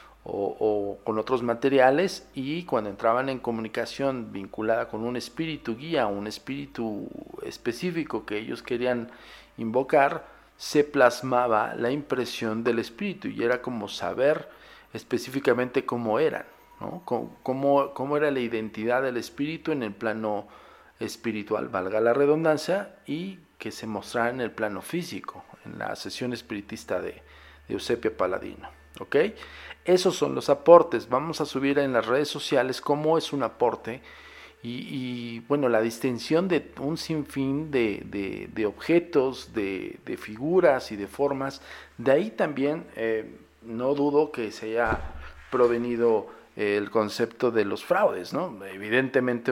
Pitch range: 110-140 Hz